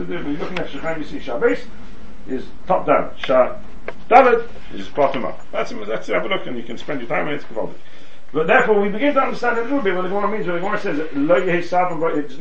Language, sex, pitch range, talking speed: English, male, 175-240 Hz, 210 wpm